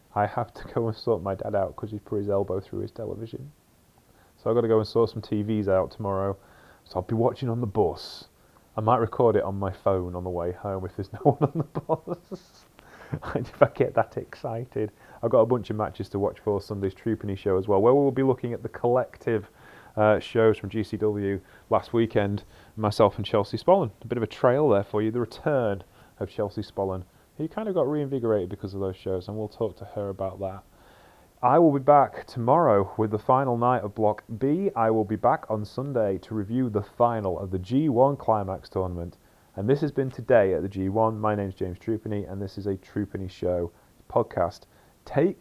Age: 30-49